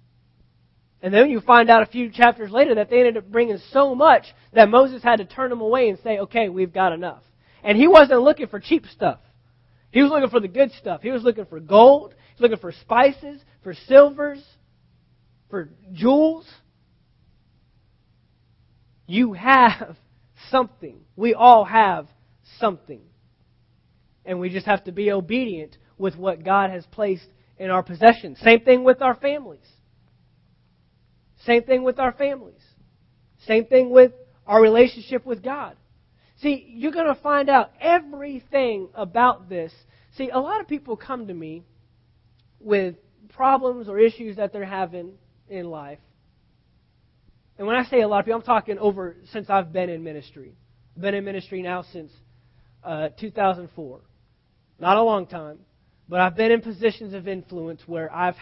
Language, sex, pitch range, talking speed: English, male, 160-245 Hz, 165 wpm